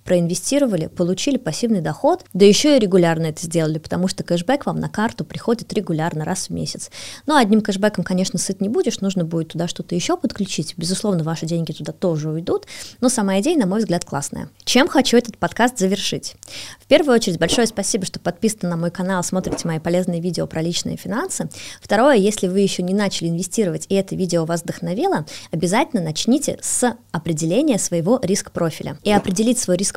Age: 20-39